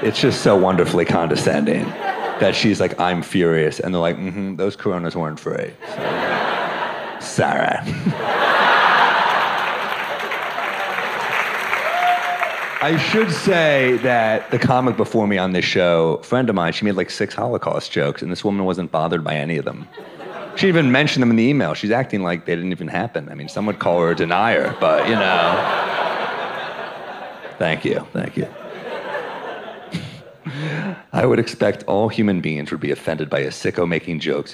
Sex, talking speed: male, 160 wpm